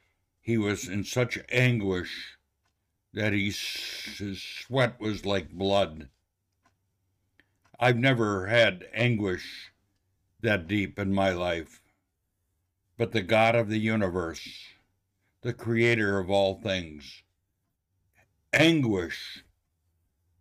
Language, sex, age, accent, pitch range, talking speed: English, male, 60-79, American, 85-105 Hz, 95 wpm